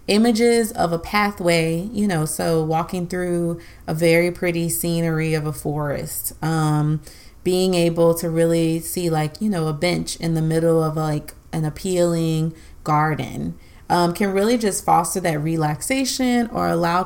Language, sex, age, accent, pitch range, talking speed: English, female, 30-49, American, 155-185 Hz, 155 wpm